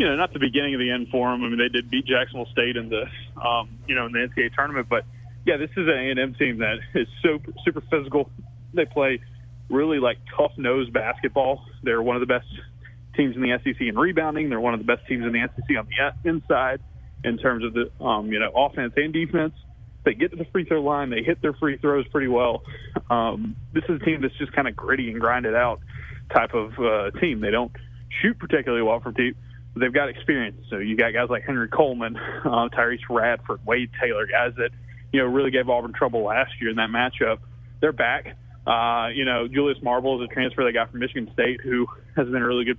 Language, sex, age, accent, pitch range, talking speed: English, male, 20-39, American, 120-145 Hz, 230 wpm